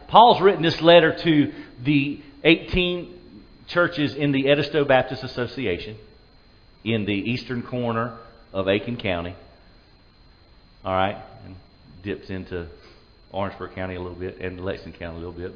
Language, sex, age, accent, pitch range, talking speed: English, male, 40-59, American, 100-155 Hz, 140 wpm